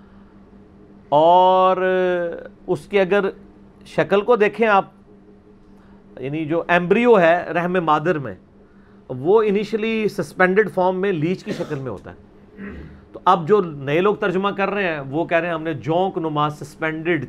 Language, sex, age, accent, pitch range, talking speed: English, male, 40-59, Indian, 135-190 Hz, 150 wpm